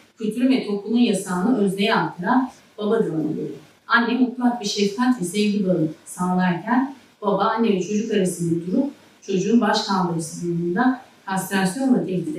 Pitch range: 185-240 Hz